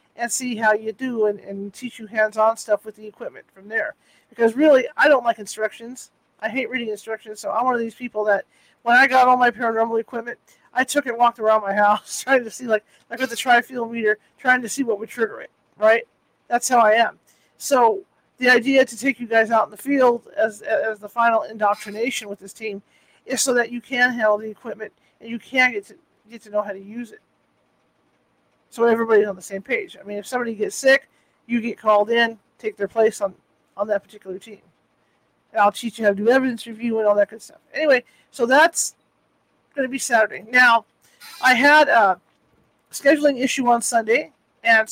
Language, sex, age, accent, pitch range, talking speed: English, male, 50-69, American, 215-255 Hz, 215 wpm